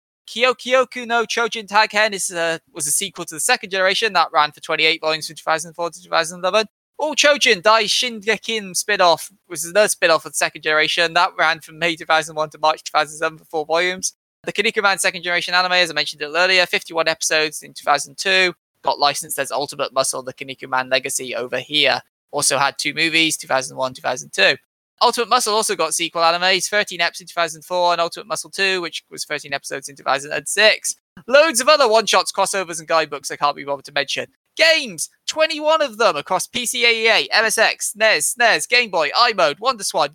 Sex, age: male, 20-39